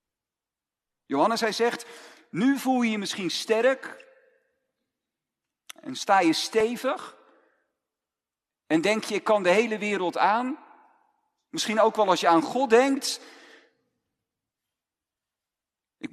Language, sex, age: Dutch, male, 50-69